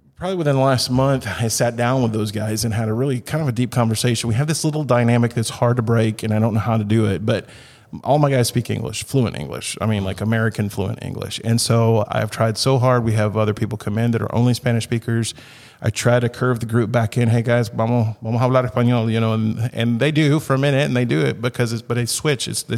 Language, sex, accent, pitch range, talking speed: English, male, American, 110-125 Hz, 265 wpm